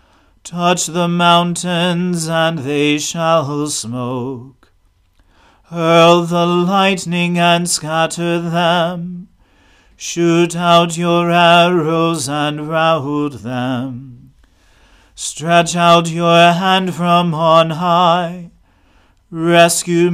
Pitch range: 145-175 Hz